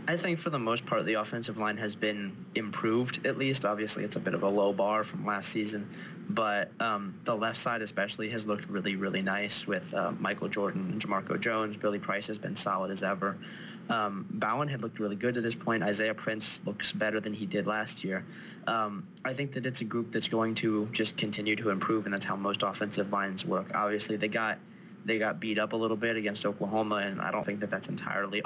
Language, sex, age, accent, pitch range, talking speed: English, male, 20-39, American, 105-115 Hz, 225 wpm